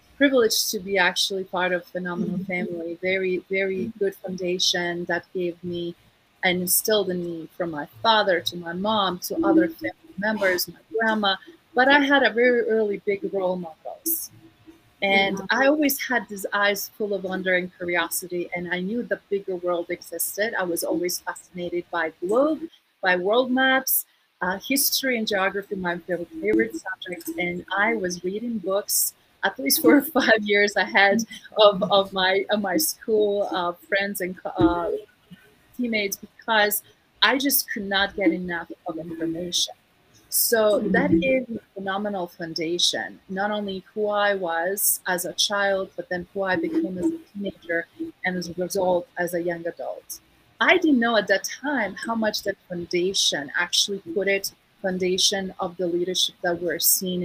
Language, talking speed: English, 165 wpm